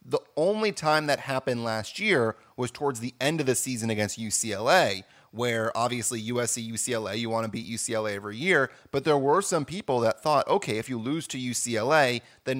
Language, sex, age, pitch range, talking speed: English, male, 30-49, 115-145 Hz, 190 wpm